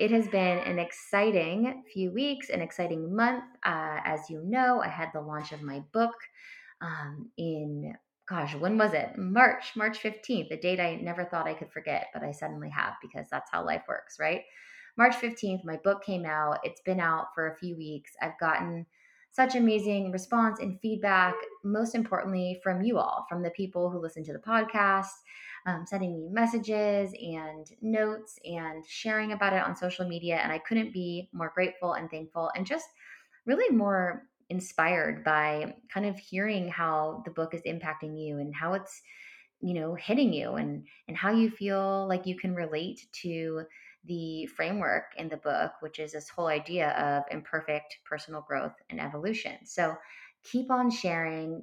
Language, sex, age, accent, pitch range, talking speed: English, female, 20-39, American, 160-215 Hz, 180 wpm